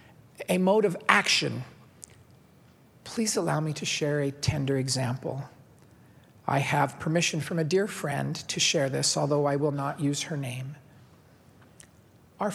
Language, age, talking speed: English, 50-69, 145 wpm